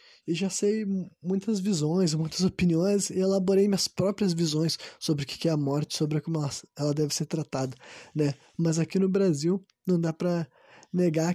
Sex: male